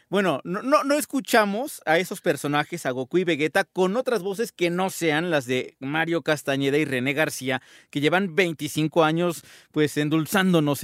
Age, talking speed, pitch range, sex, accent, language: 40-59, 170 wpm, 145-190 Hz, male, Mexican, Spanish